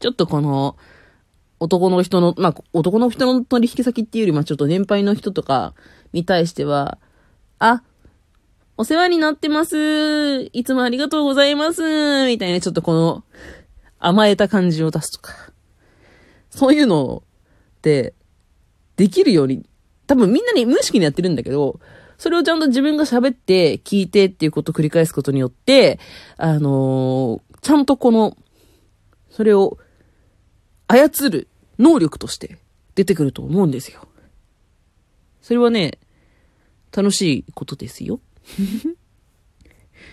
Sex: female